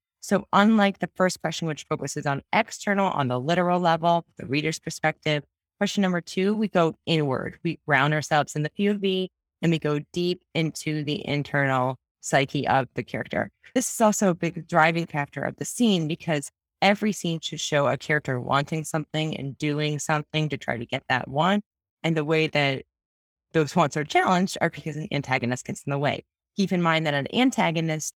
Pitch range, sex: 140-180 Hz, female